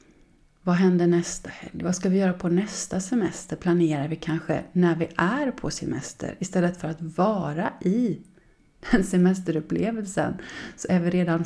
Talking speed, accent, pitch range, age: 155 wpm, native, 175-220 Hz, 30-49